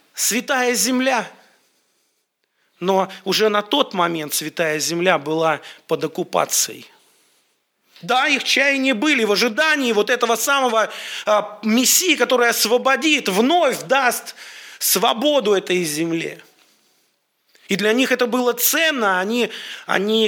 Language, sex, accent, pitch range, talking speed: Russian, male, native, 180-245 Hz, 115 wpm